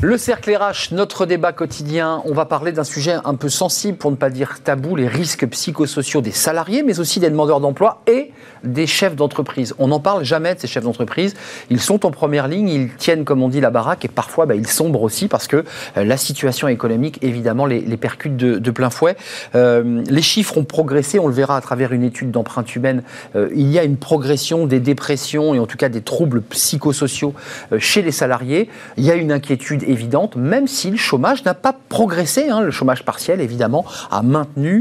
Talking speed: 215 wpm